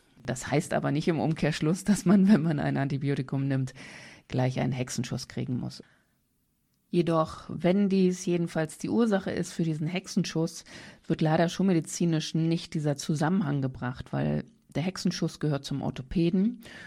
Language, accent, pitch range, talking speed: German, German, 135-165 Hz, 150 wpm